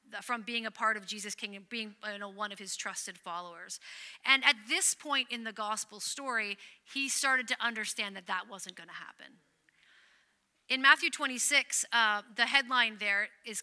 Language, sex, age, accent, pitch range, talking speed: English, female, 30-49, American, 200-245 Hz, 180 wpm